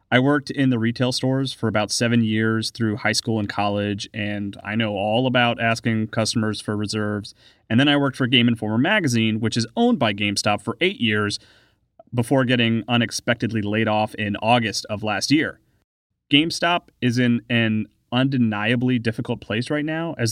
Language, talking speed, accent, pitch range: English, 175 wpm, American, 110-135 Hz